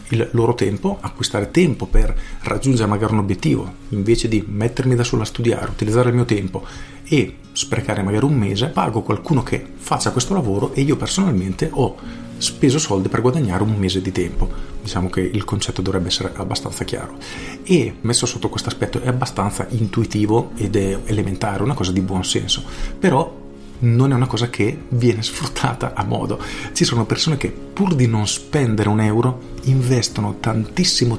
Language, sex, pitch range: Italian, male, 100-125 Hz